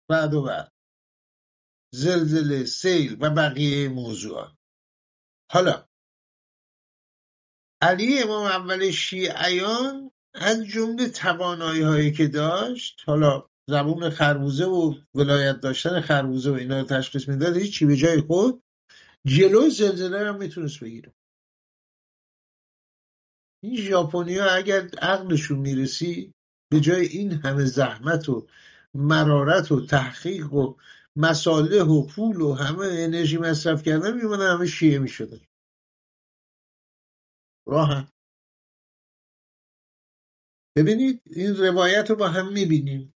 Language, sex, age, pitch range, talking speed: English, male, 50-69, 140-190 Hz, 110 wpm